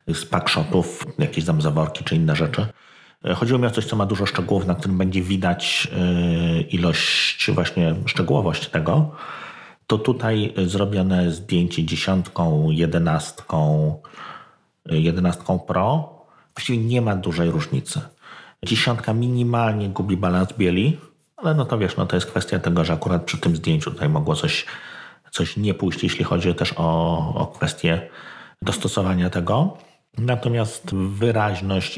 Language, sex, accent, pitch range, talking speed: Polish, male, native, 85-115 Hz, 135 wpm